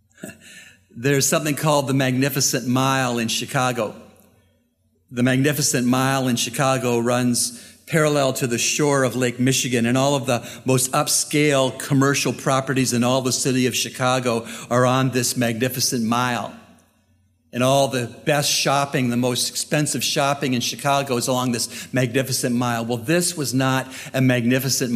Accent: American